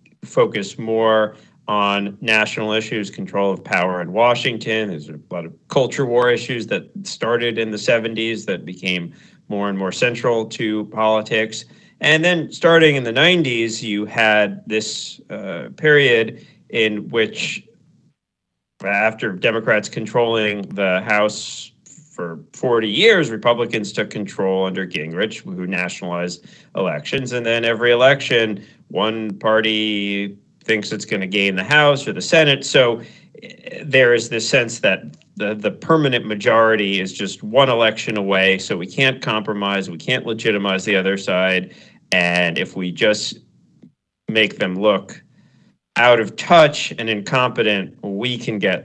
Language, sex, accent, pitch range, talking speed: English, male, American, 100-120 Hz, 140 wpm